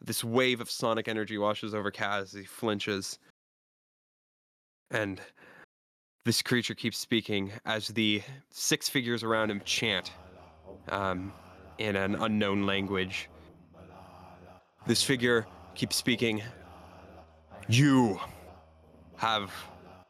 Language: English